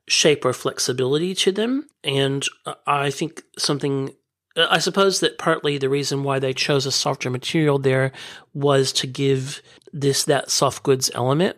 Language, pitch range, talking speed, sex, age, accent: English, 135-150 Hz, 155 wpm, male, 40-59, American